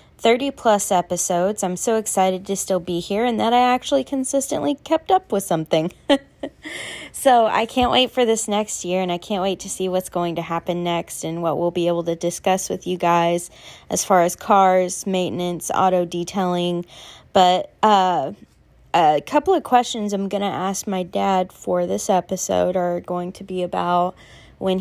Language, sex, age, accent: English, female, 20-39, American